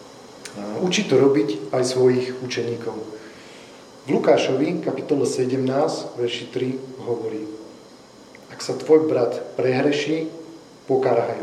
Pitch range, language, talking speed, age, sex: 120-145 Hz, Slovak, 100 wpm, 40-59, male